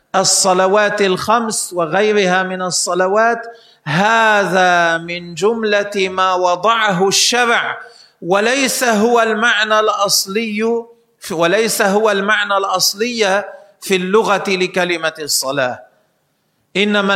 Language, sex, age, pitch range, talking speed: Arabic, male, 40-59, 185-220 Hz, 85 wpm